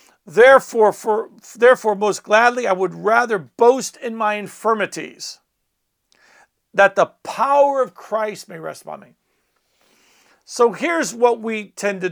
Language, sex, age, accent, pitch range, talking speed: English, male, 50-69, American, 185-235 Hz, 135 wpm